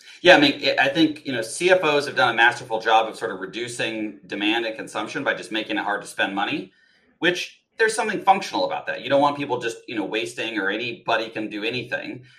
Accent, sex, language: American, male, English